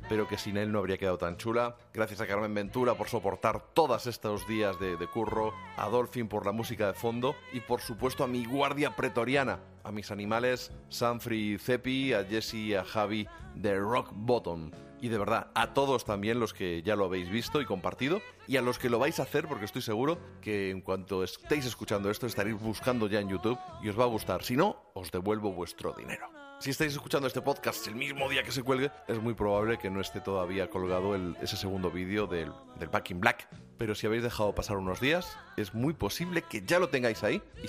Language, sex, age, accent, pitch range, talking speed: Spanish, male, 30-49, Spanish, 100-130 Hz, 220 wpm